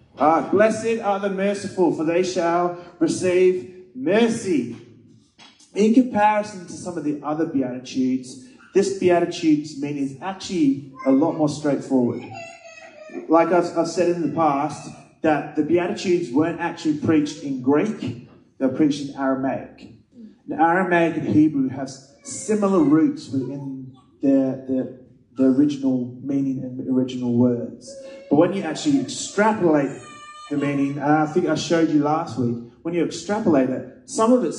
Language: English